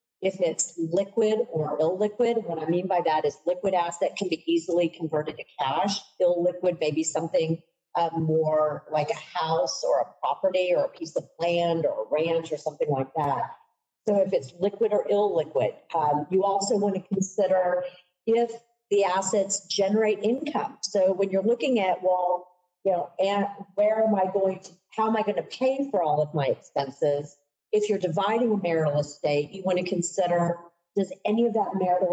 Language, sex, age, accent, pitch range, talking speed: English, female, 50-69, American, 165-205 Hz, 185 wpm